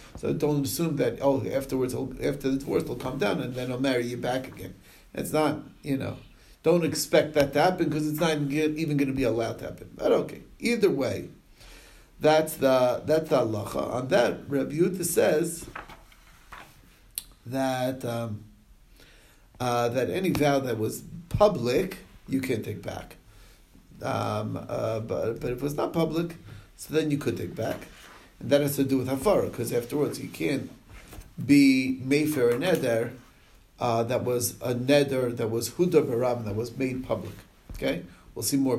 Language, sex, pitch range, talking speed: English, male, 120-150 Hz, 175 wpm